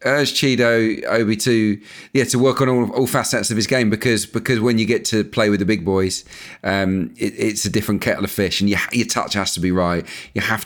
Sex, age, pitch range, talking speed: male, 40-59, 95-115 Hz, 240 wpm